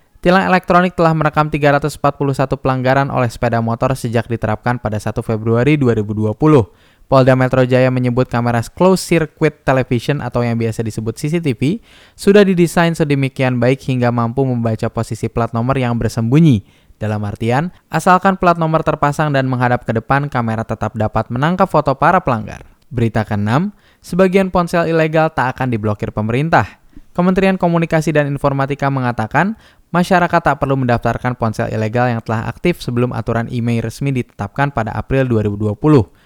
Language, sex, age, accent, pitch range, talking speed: Indonesian, male, 10-29, native, 115-155 Hz, 145 wpm